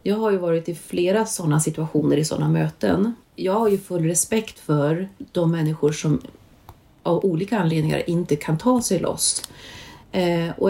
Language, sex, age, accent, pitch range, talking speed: Swedish, female, 30-49, native, 155-190 Hz, 165 wpm